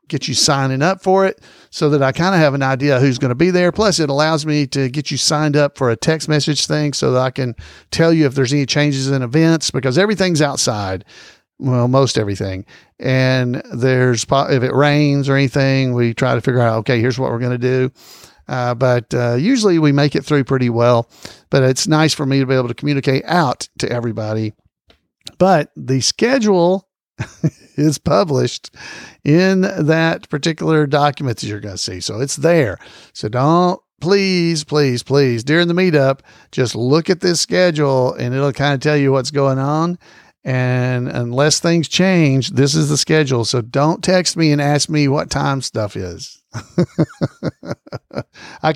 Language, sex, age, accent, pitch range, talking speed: English, male, 50-69, American, 125-155 Hz, 185 wpm